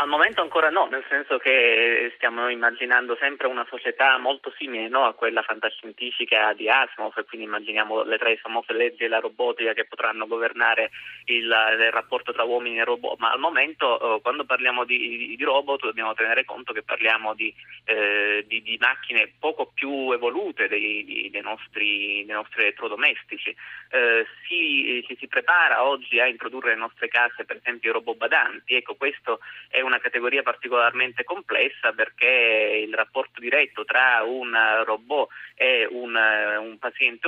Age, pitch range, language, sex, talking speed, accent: 30-49, 115-145 Hz, Italian, male, 165 wpm, native